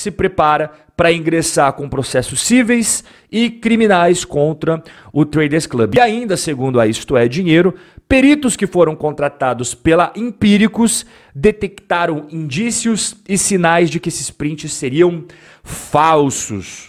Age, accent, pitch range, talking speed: 40-59, Brazilian, 130-190 Hz, 130 wpm